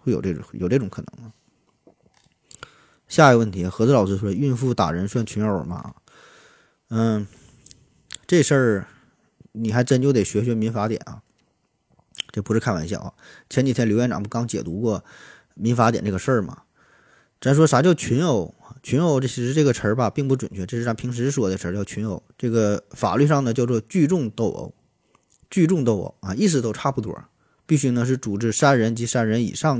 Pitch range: 110-135 Hz